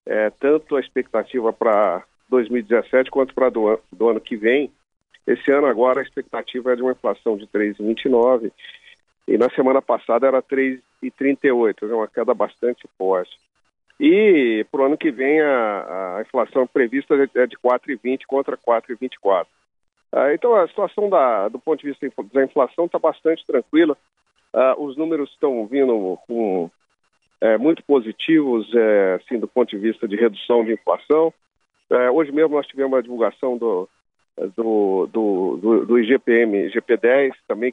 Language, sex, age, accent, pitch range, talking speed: Portuguese, male, 50-69, Brazilian, 120-150 Hz, 150 wpm